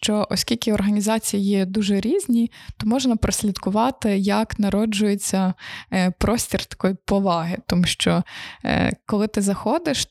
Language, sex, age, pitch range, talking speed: Ukrainian, female, 20-39, 185-225 Hz, 115 wpm